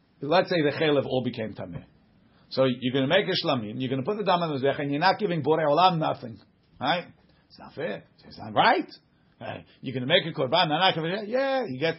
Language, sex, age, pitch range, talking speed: English, male, 50-69, 130-180 Hz, 245 wpm